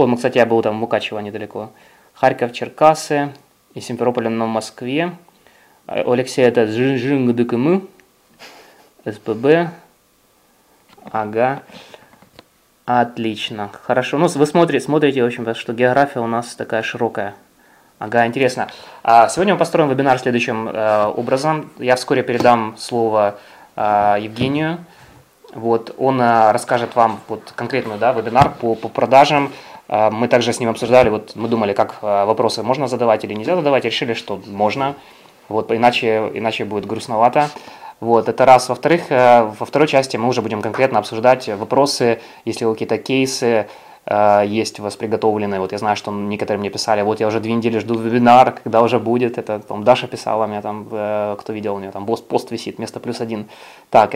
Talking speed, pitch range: 145 wpm, 110-130 Hz